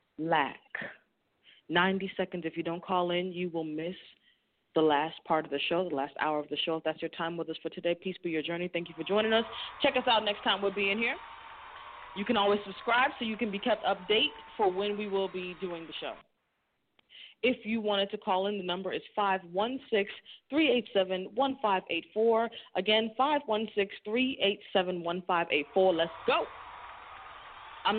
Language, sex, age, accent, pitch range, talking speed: English, female, 20-39, American, 165-205 Hz, 180 wpm